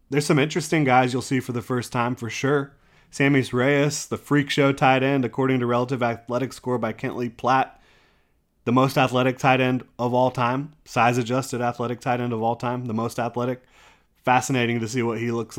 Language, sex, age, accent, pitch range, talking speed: English, male, 30-49, American, 115-135 Hz, 200 wpm